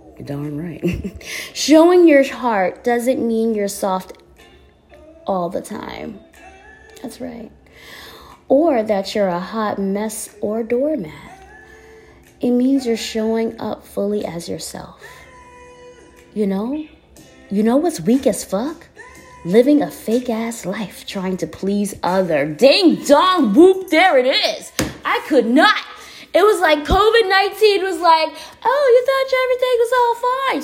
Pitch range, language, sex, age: 230-355 Hz, English, female, 20-39